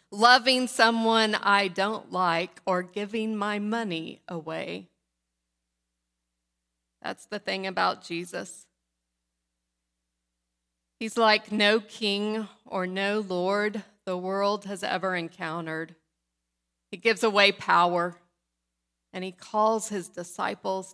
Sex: female